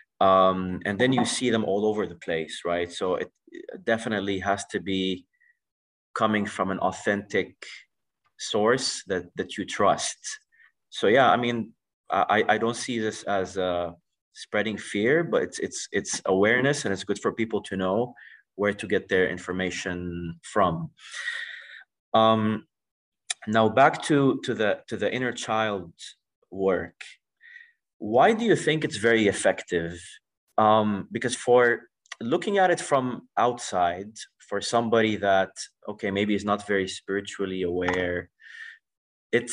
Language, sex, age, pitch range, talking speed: English, male, 30-49, 95-120 Hz, 145 wpm